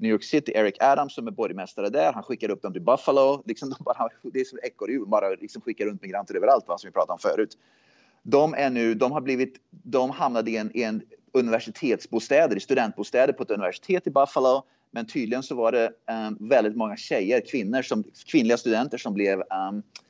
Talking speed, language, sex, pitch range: 210 wpm, Swedish, male, 110-140 Hz